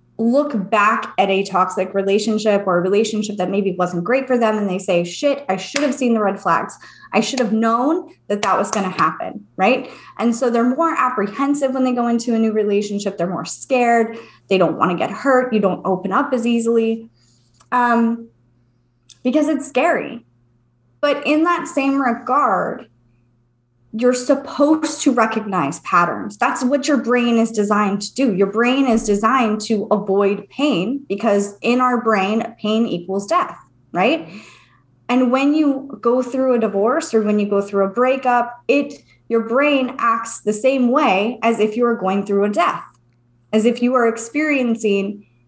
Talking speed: 180 wpm